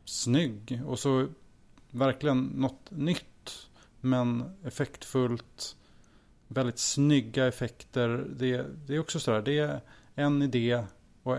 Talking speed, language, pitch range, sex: 115 wpm, Swedish, 115-130 Hz, male